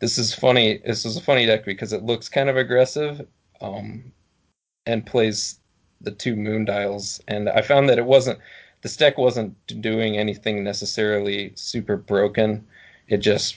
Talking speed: 165 wpm